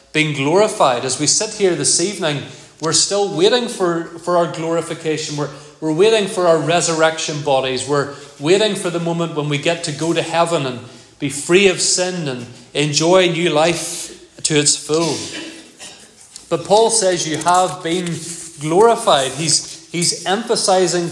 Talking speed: 160 wpm